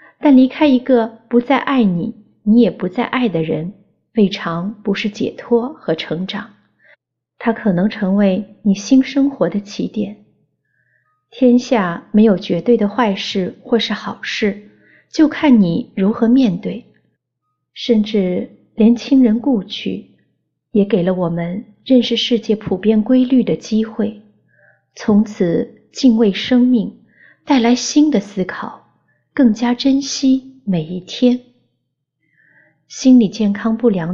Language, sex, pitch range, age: Chinese, female, 190-240 Hz, 30-49